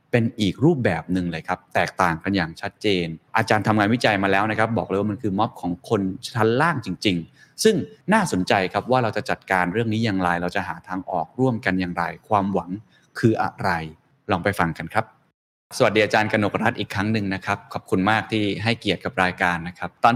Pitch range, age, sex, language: 90-115 Hz, 20-39, male, Thai